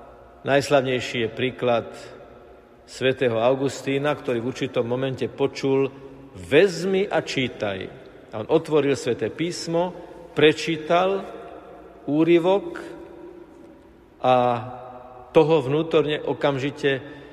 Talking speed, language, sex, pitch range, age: 85 wpm, Slovak, male, 130-170 Hz, 50-69